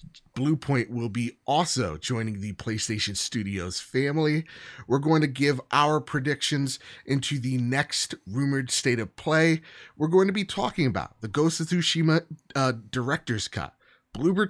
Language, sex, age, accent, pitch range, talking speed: English, male, 30-49, American, 105-140 Hz, 155 wpm